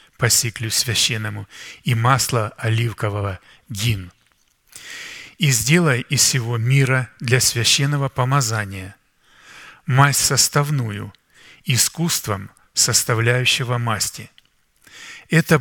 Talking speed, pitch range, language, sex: 75 wpm, 110-135 Hz, Russian, male